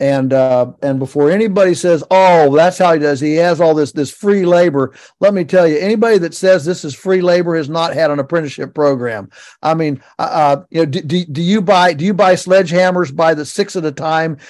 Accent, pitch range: American, 155-190 Hz